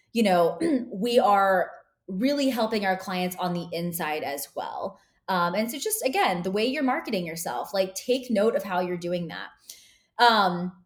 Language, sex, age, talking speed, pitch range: English, female, 20-39, 175 wpm, 185-250 Hz